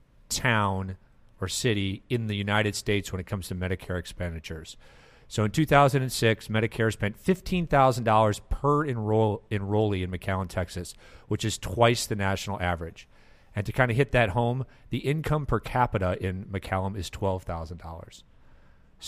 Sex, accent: male, American